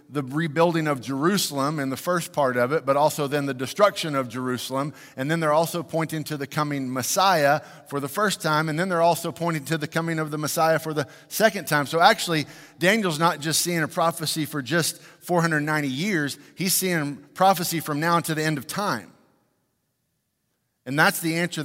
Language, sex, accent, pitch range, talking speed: English, male, American, 145-170 Hz, 195 wpm